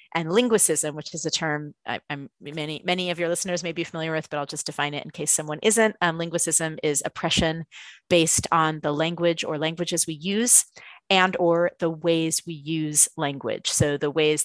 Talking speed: 185 wpm